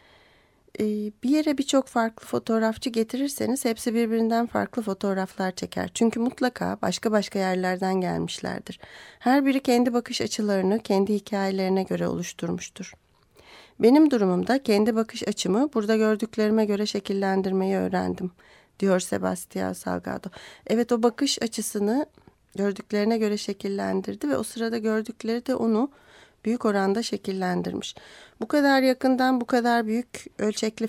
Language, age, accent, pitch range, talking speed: Turkish, 30-49, native, 195-235 Hz, 120 wpm